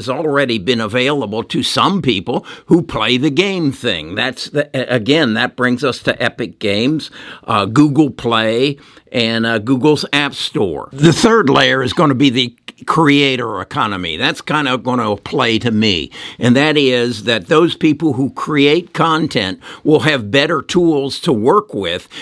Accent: American